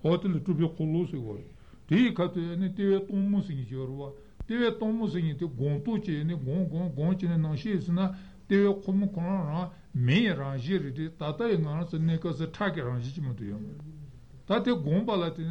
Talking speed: 160 wpm